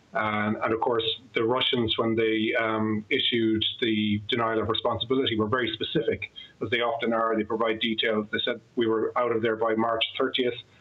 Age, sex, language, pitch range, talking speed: 30-49, male, English, 105-115 Hz, 185 wpm